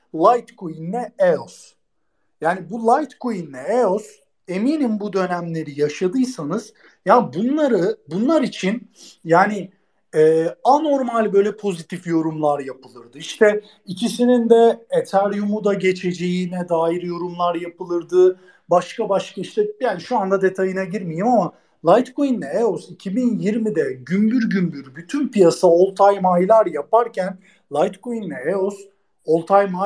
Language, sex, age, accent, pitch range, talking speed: Turkish, male, 50-69, native, 165-215 Hz, 115 wpm